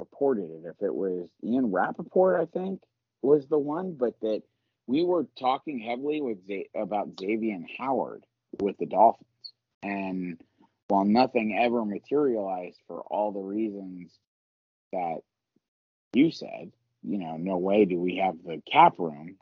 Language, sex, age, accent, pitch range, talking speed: English, male, 30-49, American, 105-145 Hz, 145 wpm